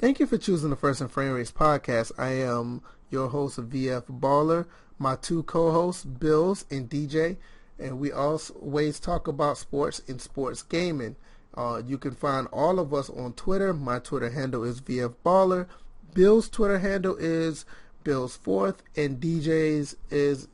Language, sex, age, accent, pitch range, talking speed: English, male, 30-49, American, 130-165 Hz, 160 wpm